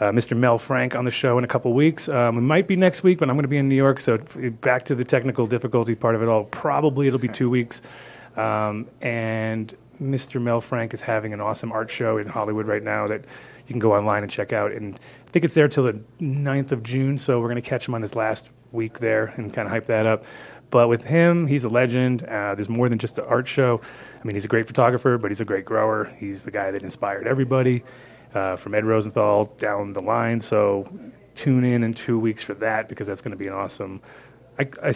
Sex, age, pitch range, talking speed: male, 30-49, 105-130 Hz, 250 wpm